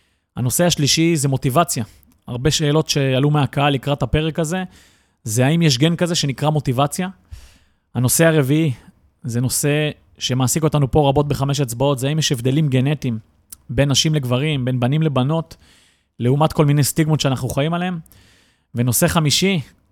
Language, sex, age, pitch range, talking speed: Hebrew, male, 30-49, 125-150 Hz, 145 wpm